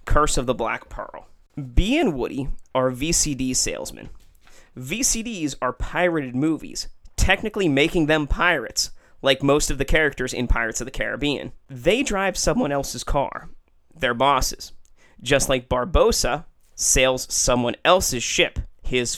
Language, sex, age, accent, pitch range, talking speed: English, male, 30-49, American, 125-150 Hz, 140 wpm